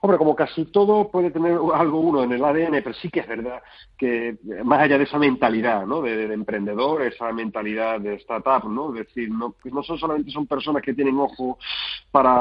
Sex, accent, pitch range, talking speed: male, Spanish, 115-140 Hz, 215 wpm